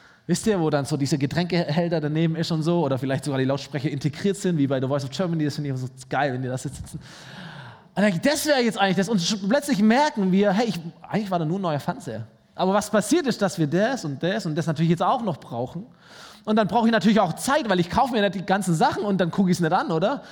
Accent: German